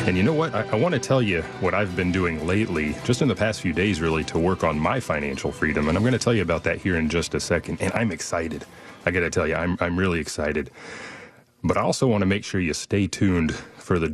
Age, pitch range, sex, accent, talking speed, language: 30-49, 85-100 Hz, male, American, 275 wpm, English